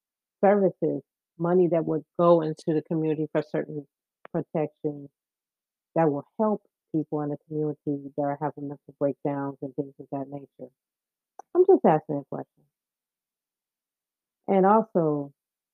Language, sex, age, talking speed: English, female, 40-59, 135 wpm